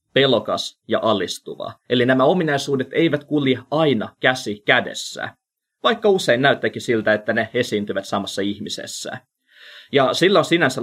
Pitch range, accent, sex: 115-155 Hz, native, male